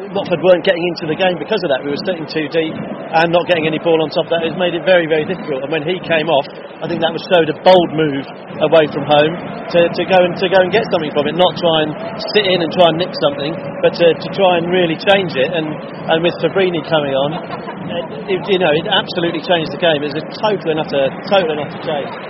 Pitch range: 160-190 Hz